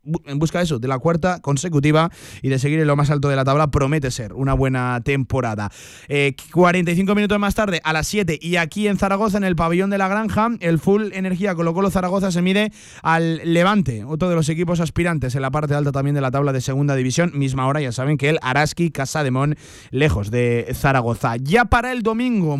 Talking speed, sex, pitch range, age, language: 220 wpm, male, 140-190 Hz, 30-49, Spanish